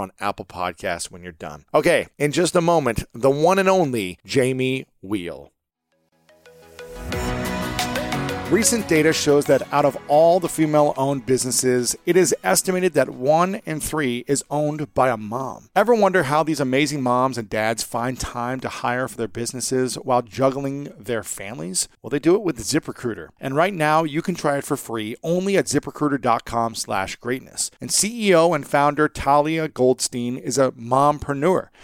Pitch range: 120-155 Hz